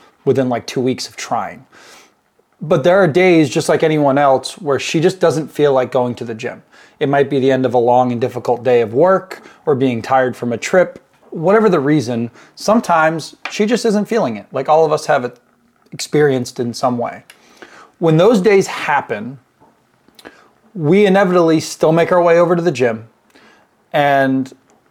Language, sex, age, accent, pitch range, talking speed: English, male, 20-39, American, 130-175 Hz, 185 wpm